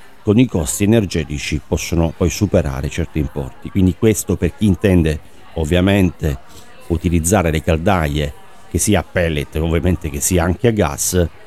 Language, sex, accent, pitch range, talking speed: Italian, male, native, 80-100 Hz, 145 wpm